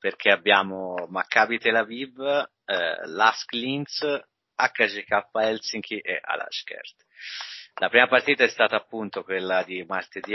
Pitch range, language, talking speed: 95-115 Hz, Italian, 120 wpm